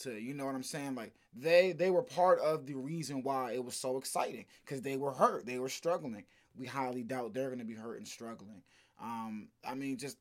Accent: American